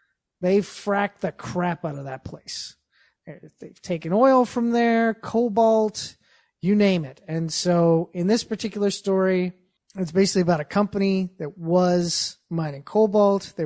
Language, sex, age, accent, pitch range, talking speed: English, male, 30-49, American, 180-235 Hz, 145 wpm